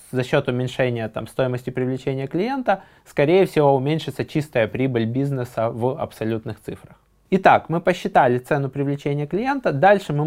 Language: Russian